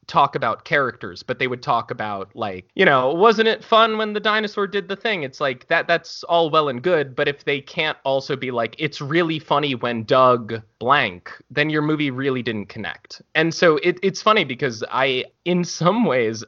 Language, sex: English, male